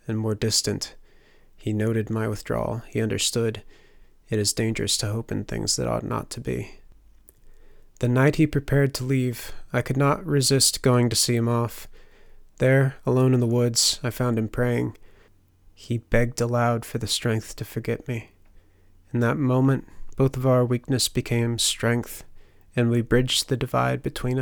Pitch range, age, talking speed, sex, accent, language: 105-125 Hz, 30-49, 170 wpm, male, American, English